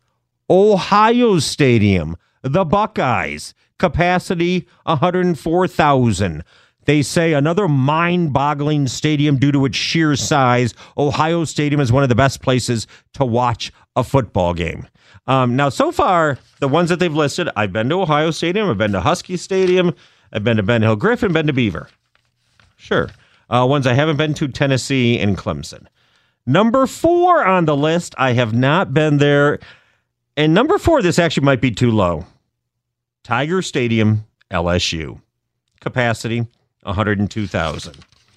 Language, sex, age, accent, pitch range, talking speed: English, male, 40-59, American, 115-170 Hz, 140 wpm